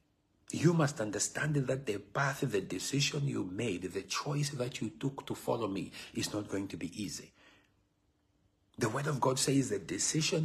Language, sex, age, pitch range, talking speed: English, male, 60-79, 100-140 Hz, 180 wpm